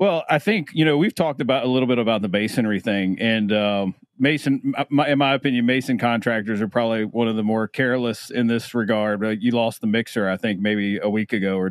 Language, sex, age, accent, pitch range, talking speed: English, male, 40-59, American, 105-130 Hz, 235 wpm